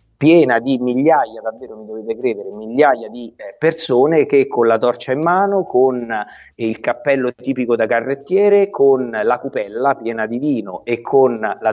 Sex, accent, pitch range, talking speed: male, native, 110-135 Hz, 160 wpm